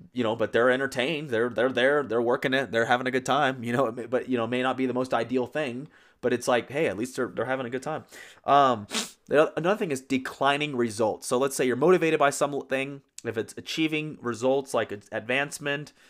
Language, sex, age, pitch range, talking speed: English, male, 30-49, 120-145 Hz, 225 wpm